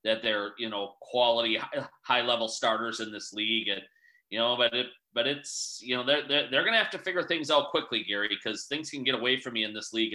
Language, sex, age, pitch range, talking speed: English, male, 30-49, 110-135 Hz, 250 wpm